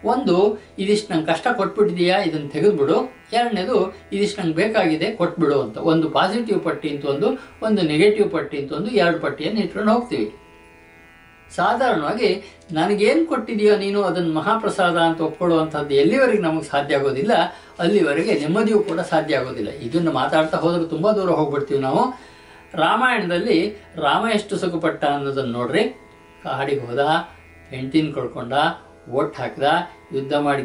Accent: native